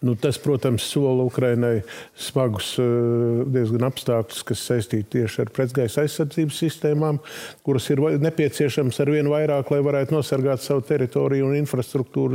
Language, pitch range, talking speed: English, 125-150 Hz, 130 wpm